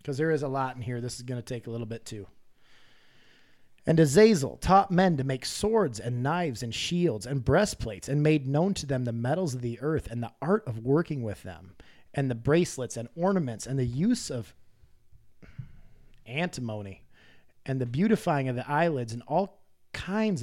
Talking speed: 190 wpm